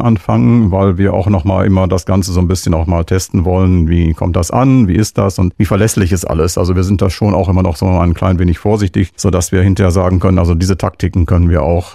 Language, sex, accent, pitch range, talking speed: German, male, German, 85-100 Hz, 260 wpm